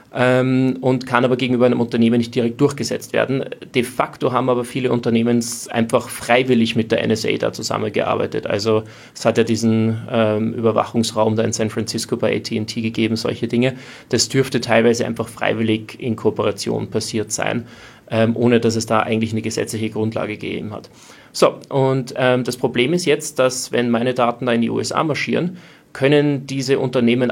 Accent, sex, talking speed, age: German, male, 170 wpm, 30-49